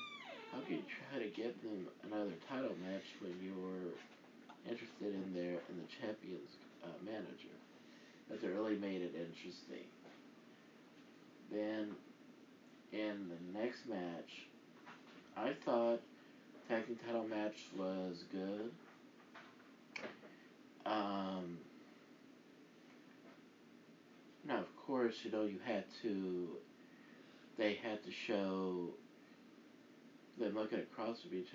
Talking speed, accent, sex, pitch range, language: 105 wpm, American, male, 90-110 Hz, English